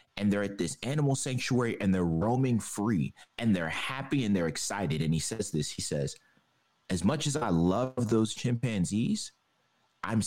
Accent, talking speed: American, 175 wpm